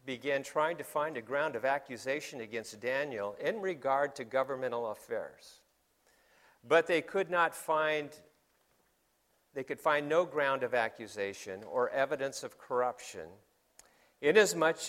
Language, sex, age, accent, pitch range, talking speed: English, male, 50-69, American, 130-175 Hz, 130 wpm